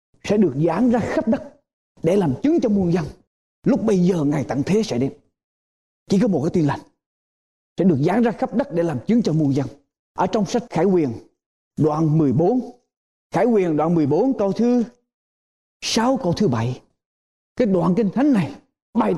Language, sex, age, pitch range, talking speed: Vietnamese, male, 20-39, 210-295 Hz, 190 wpm